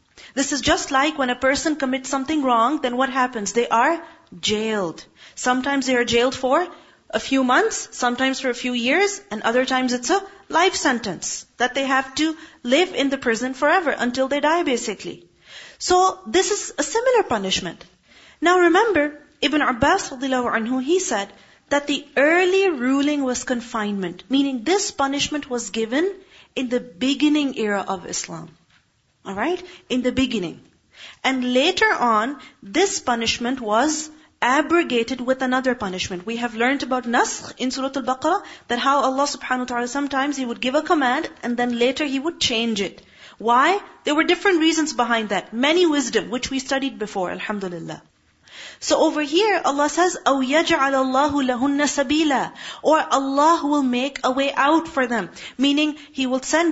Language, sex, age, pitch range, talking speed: English, female, 40-59, 245-310 Hz, 165 wpm